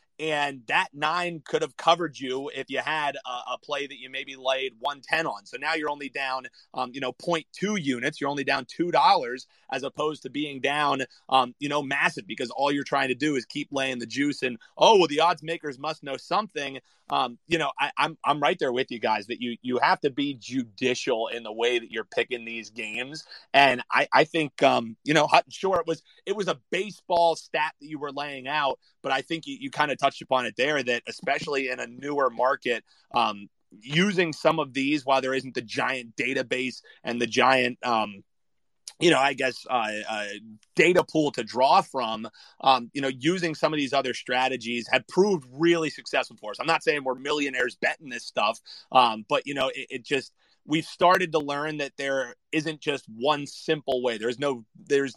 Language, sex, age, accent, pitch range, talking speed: English, male, 30-49, American, 125-155 Hz, 220 wpm